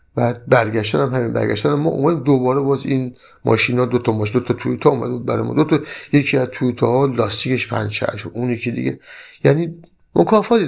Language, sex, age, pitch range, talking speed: Persian, male, 50-69, 110-140 Hz, 175 wpm